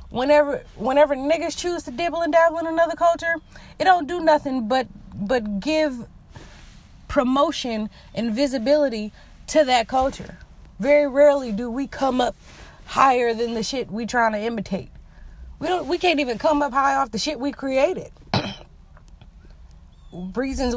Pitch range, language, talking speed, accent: 195-275 Hz, English, 150 wpm, American